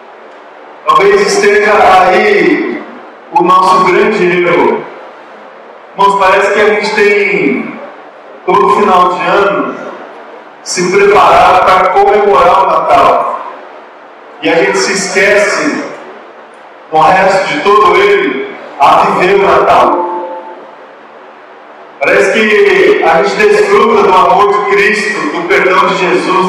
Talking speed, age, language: 115 wpm, 40-59, Portuguese